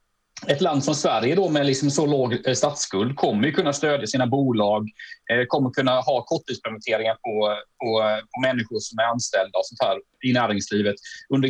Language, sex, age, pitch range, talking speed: Swedish, male, 30-49, 120-145 Hz, 165 wpm